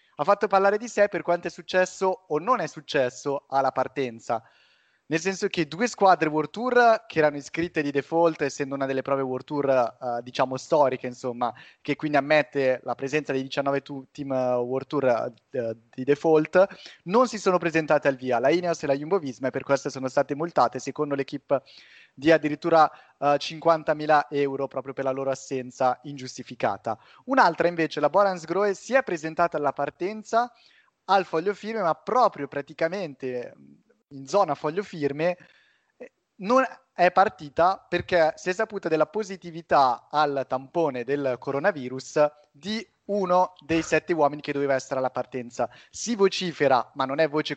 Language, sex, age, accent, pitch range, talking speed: Italian, male, 20-39, native, 135-185 Hz, 165 wpm